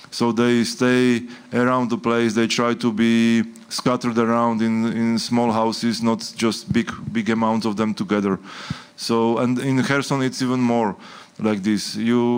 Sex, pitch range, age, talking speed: male, 110-120 Hz, 20-39, 165 wpm